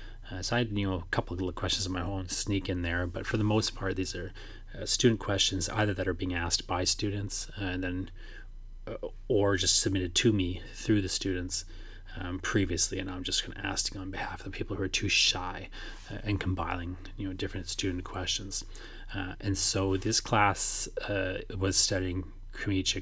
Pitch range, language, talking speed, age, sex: 90-105 Hz, English, 205 wpm, 30-49, male